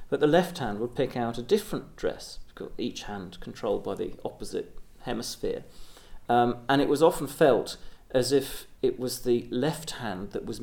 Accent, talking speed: British, 180 wpm